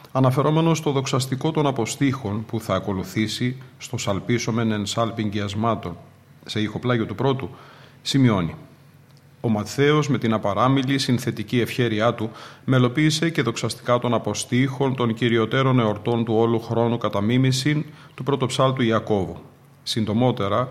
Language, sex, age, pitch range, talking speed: Greek, male, 40-59, 110-135 Hz, 120 wpm